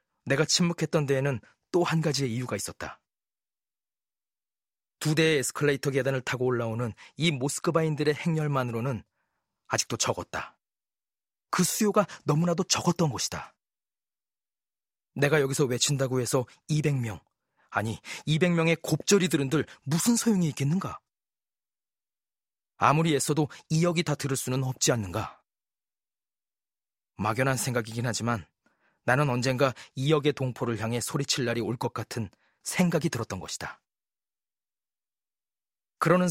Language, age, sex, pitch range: Korean, 40-59, male, 120-155 Hz